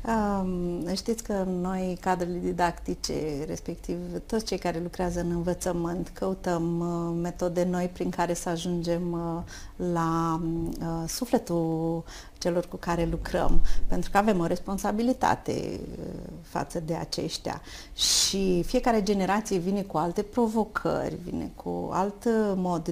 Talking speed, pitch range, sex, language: 115 wpm, 175-225 Hz, female, Romanian